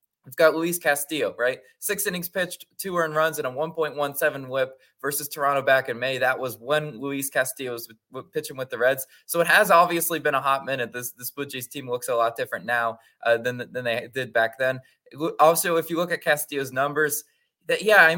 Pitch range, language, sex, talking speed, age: 130-170 Hz, English, male, 220 wpm, 20-39